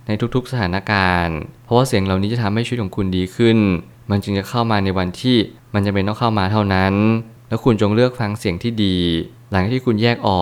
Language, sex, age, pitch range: Thai, male, 20-39, 95-115 Hz